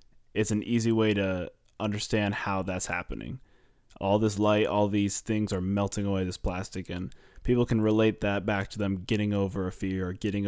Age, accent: 20-39, American